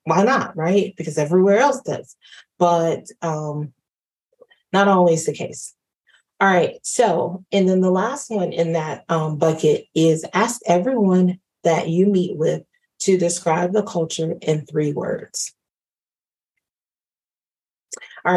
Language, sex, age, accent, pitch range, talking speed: English, female, 30-49, American, 165-200 Hz, 130 wpm